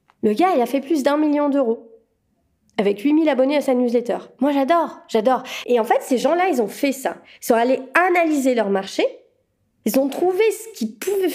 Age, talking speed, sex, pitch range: 30-49, 205 wpm, female, 220-300 Hz